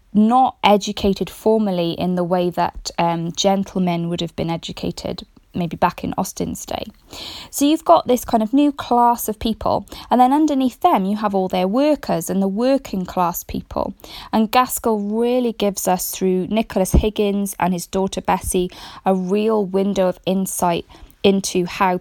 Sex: female